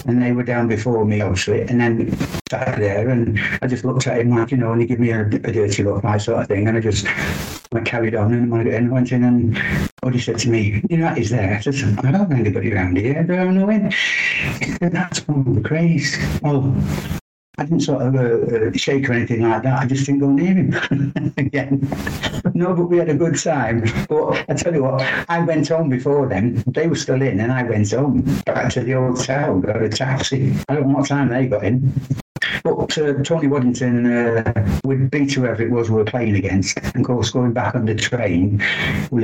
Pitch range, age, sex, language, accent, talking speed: 110-140 Hz, 60-79, male, English, British, 230 wpm